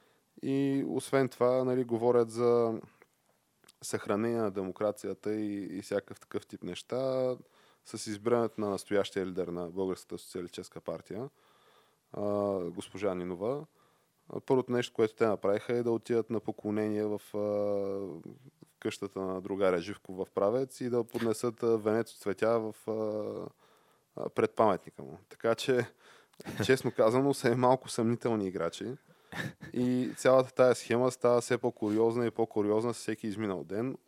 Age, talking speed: 20-39, 130 wpm